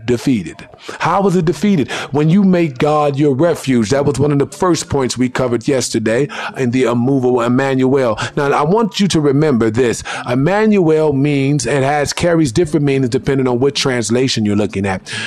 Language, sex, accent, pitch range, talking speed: English, male, American, 130-180 Hz, 180 wpm